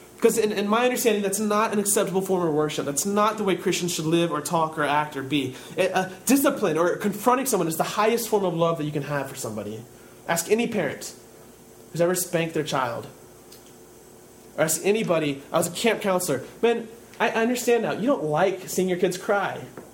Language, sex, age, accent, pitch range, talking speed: English, male, 30-49, American, 140-210 Hz, 215 wpm